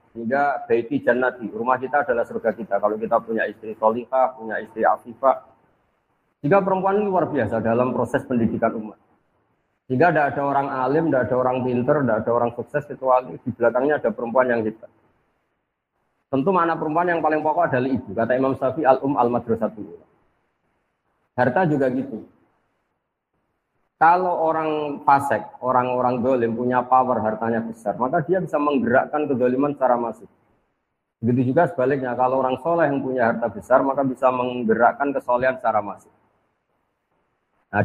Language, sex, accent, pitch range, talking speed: Indonesian, male, native, 115-140 Hz, 150 wpm